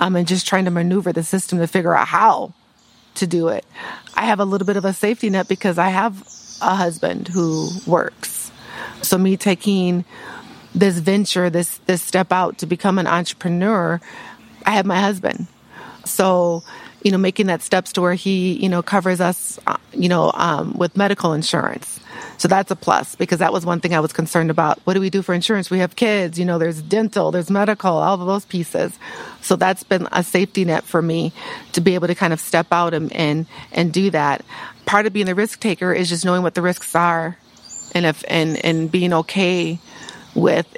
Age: 30-49